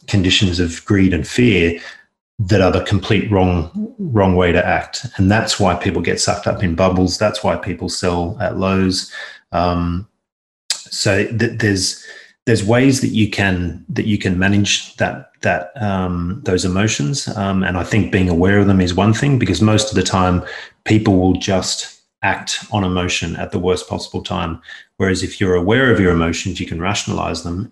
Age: 30-49